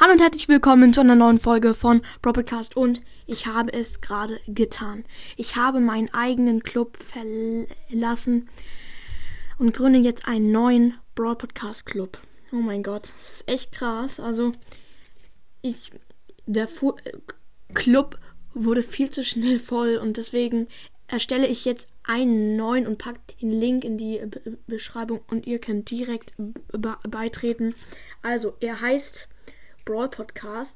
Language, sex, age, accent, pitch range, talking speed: German, female, 10-29, German, 225-250 Hz, 140 wpm